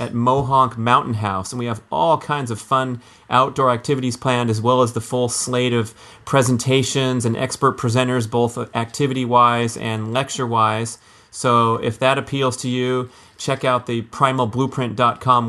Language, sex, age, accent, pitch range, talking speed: English, male, 30-49, American, 110-130 Hz, 150 wpm